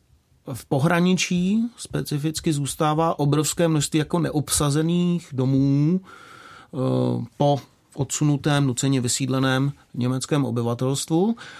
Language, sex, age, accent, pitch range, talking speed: Czech, male, 30-49, native, 135-155 Hz, 80 wpm